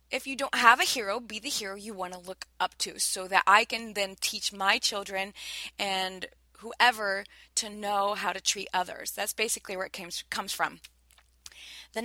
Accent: American